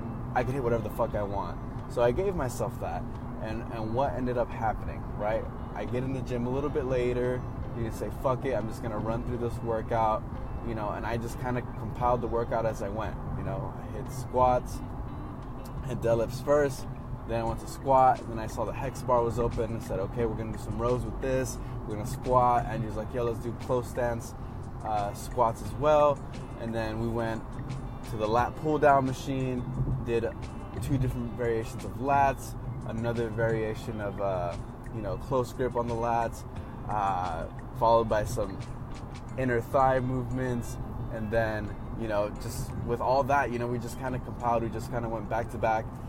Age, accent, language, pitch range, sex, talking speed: 20-39, American, English, 115-125 Hz, male, 205 wpm